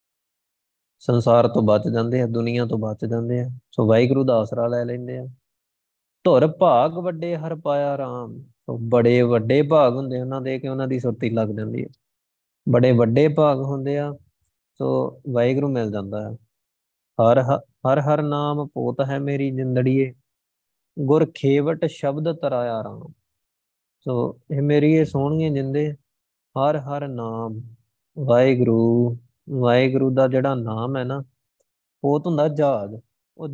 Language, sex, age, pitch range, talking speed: Punjabi, male, 20-39, 115-145 Hz, 135 wpm